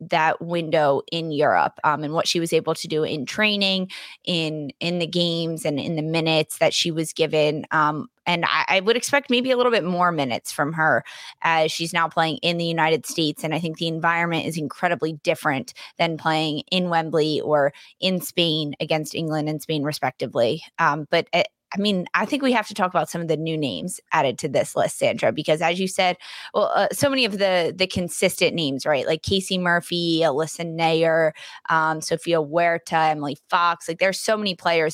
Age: 20-39